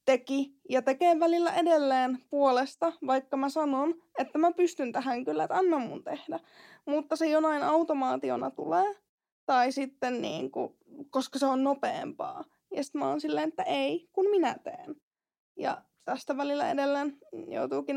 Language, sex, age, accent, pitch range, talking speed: Finnish, female, 20-39, native, 270-335 Hz, 155 wpm